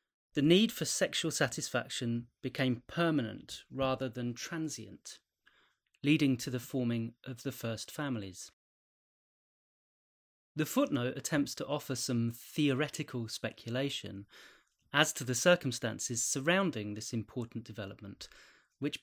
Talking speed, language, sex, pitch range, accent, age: 110 wpm, English, male, 115-150 Hz, British, 30-49